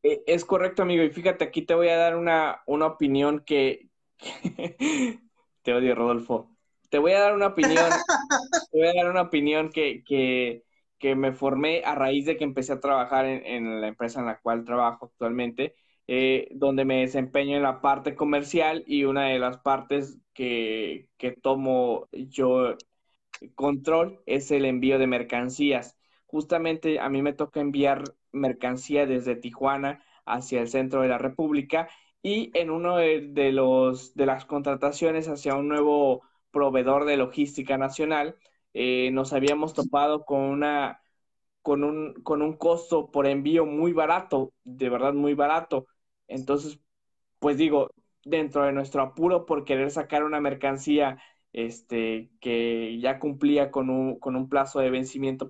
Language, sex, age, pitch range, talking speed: Spanish, male, 20-39, 130-155 Hz, 160 wpm